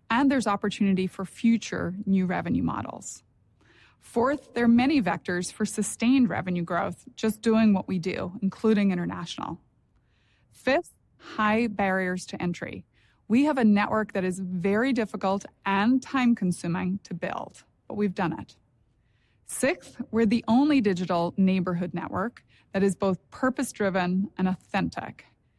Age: 30-49